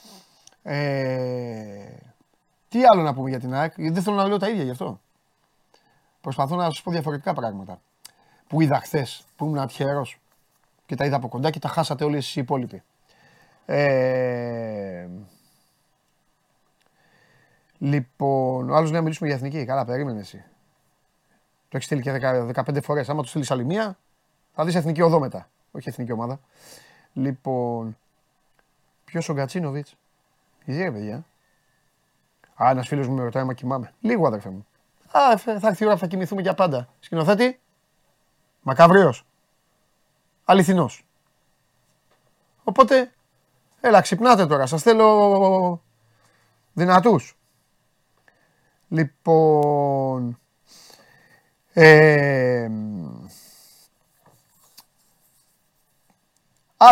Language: Greek